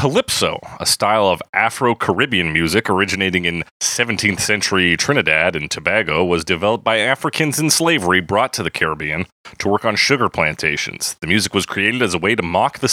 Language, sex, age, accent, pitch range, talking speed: English, male, 30-49, American, 90-120 Hz, 175 wpm